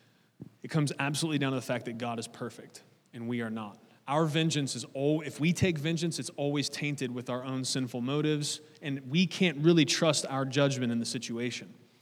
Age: 30-49